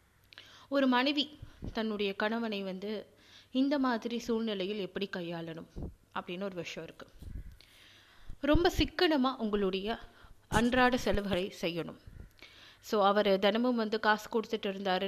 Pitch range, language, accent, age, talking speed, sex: 190-240 Hz, Tamil, native, 20-39, 105 wpm, female